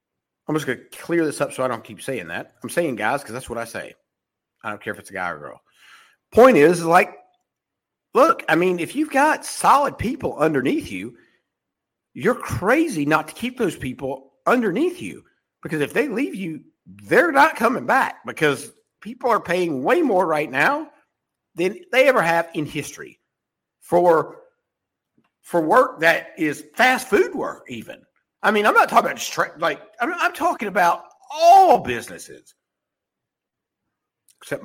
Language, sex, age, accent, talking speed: English, male, 50-69, American, 170 wpm